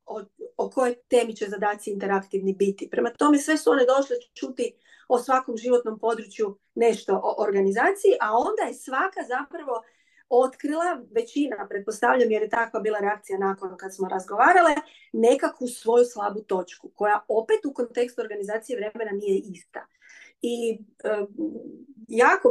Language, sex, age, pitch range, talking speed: Croatian, female, 30-49, 200-250 Hz, 145 wpm